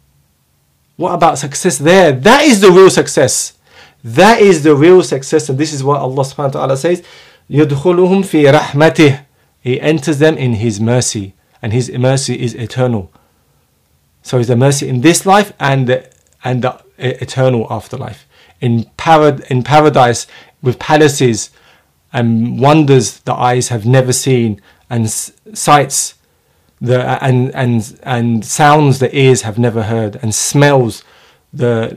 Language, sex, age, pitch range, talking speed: English, male, 30-49, 115-150 Hz, 130 wpm